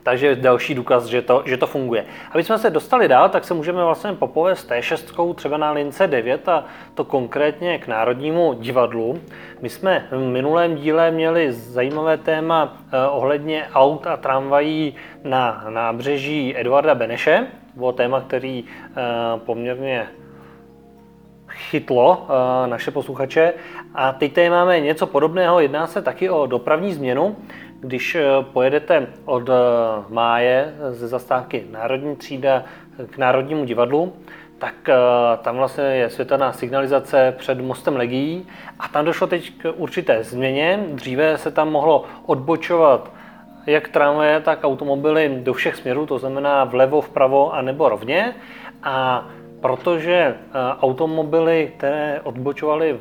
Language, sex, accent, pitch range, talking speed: Czech, male, native, 130-160 Hz, 130 wpm